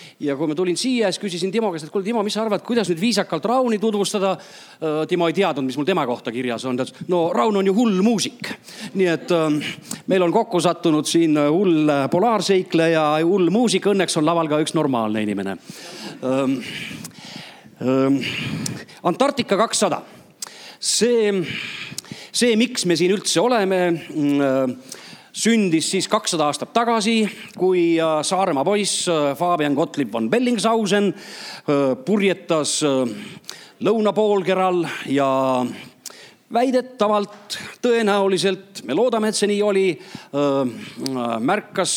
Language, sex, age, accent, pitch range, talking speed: English, male, 40-59, Finnish, 145-205 Hz, 125 wpm